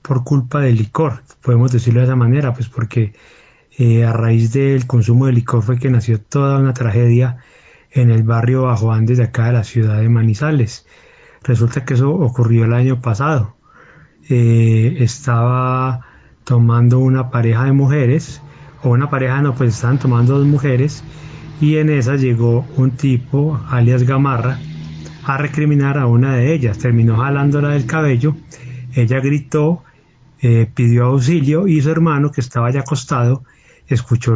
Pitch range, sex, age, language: 115-140 Hz, male, 30-49, Spanish